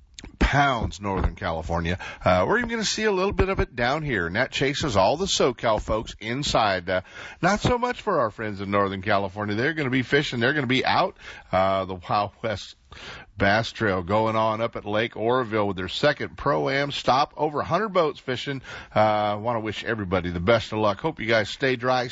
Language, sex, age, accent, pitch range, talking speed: English, male, 50-69, American, 95-120 Hz, 215 wpm